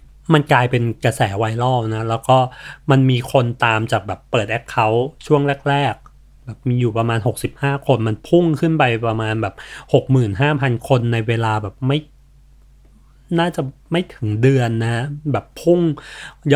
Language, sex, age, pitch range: Thai, male, 30-49, 115-145 Hz